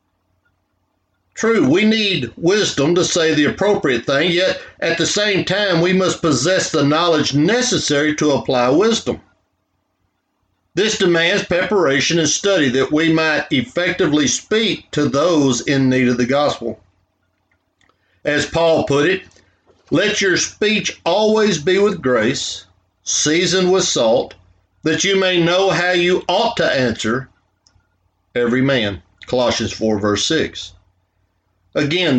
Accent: American